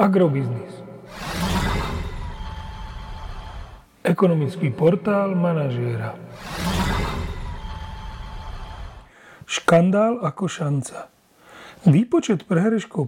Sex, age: male, 40-59